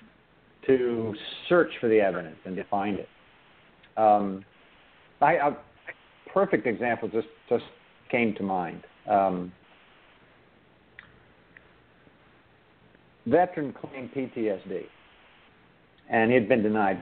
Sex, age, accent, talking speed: male, 60-79, American, 100 wpm